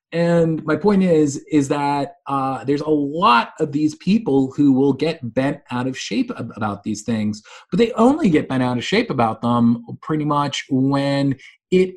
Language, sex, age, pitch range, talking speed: English, male, 30-49, 130-180 Hz, 185 wpm